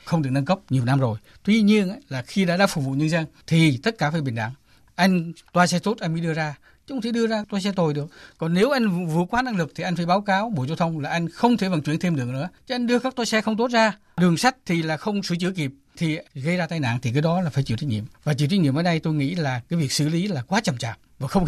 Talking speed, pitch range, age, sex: 315 wpm, 140-190 Hz, 60-79, male